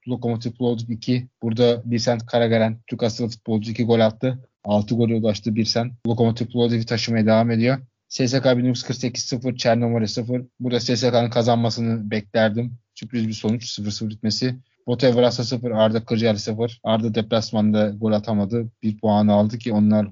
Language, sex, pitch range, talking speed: Turkish, male, 110-120 Hz, 155 wpm